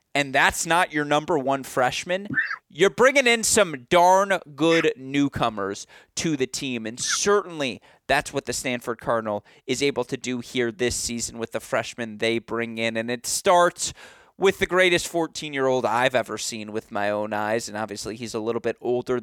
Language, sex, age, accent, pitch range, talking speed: English, male, 30-49, American, 115-165 Hz, 180 wpm